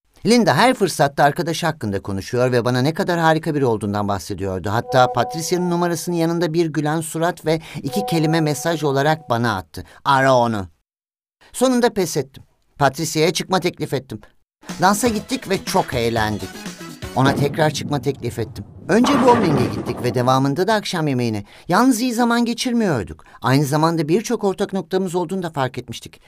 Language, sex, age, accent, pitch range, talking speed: Turkish, male, 50-69, native, 125-185 Hz, 155 wpm